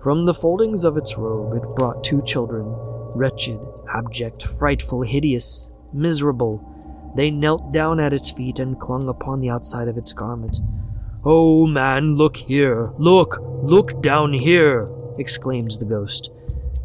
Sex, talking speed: male, 140 wpm